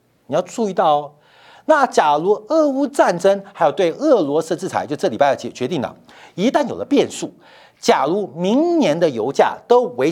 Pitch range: 205-325 Hz